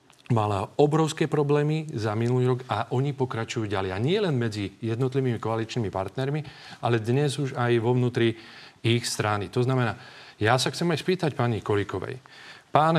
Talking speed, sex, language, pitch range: 160 wpm, male, Slovak, 105-140 Hz